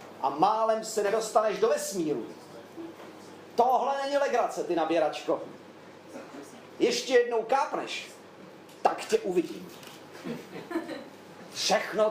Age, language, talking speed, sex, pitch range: 40-59, Czech, 90 wpm, male, 150-220 Hz